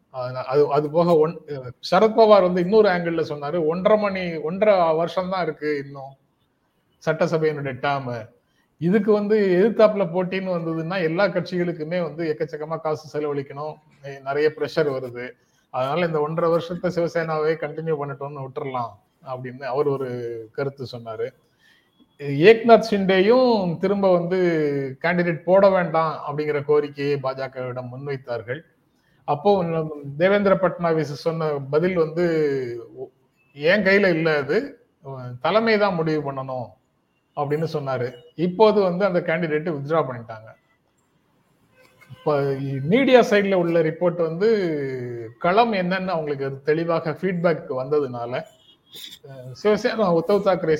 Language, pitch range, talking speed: Tamil, 140-180 Hz, 105 wpm